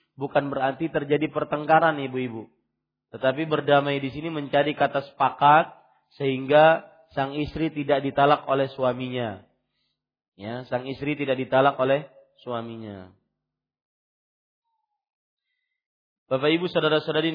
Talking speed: 100 wpm